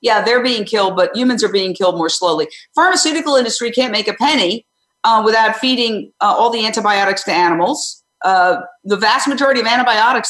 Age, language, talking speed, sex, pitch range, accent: 50-69, English, 185 wpm, female, 205-285 Hz, American